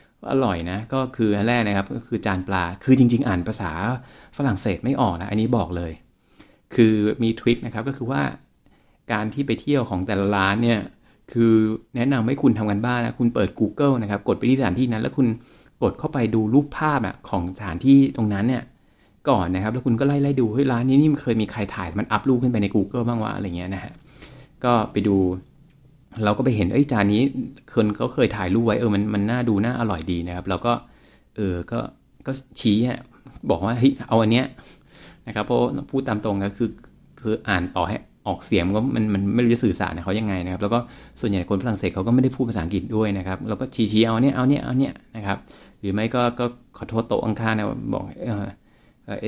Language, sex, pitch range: Thai, male, 100-125 Hz